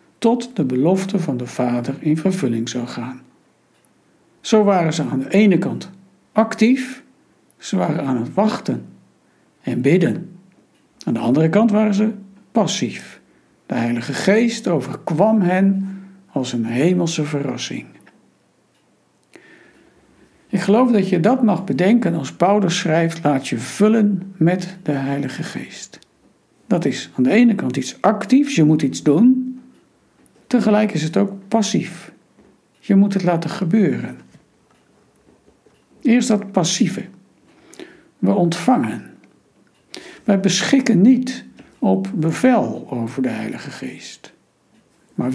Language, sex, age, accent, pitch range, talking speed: Dutch, male, 60-79, Dutch, 155-215 Hz, 125 wpm